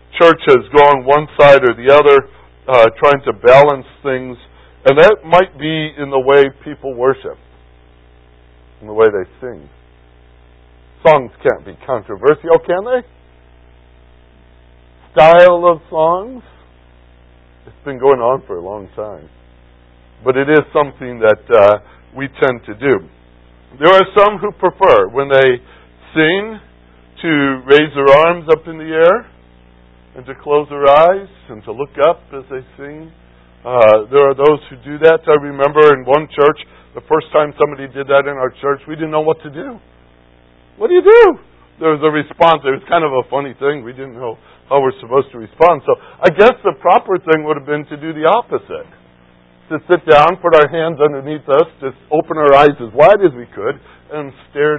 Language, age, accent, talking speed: English, 60-79, American, 180 wpm